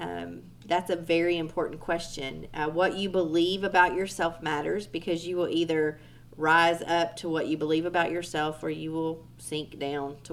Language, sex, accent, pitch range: English, female, American, 150-175 Hz